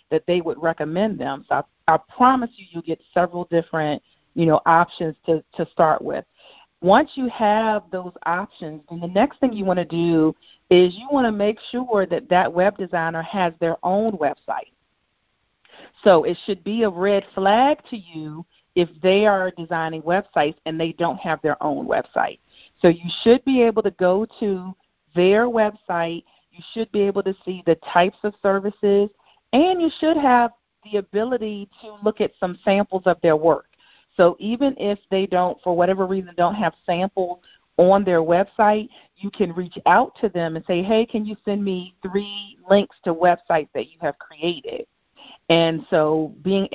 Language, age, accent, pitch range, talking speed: English, 40-59, American, 170-210 Hz, 180 wpm